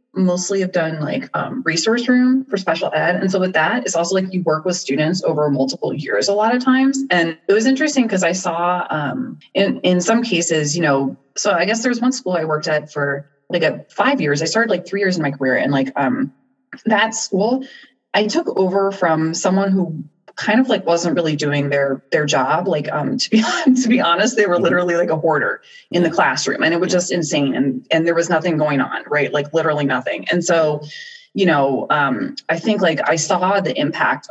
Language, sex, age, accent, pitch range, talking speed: English, female, 30-49, American, 150-215 Hz, 225 wpm